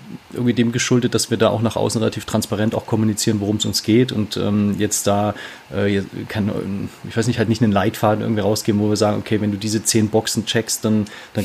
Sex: male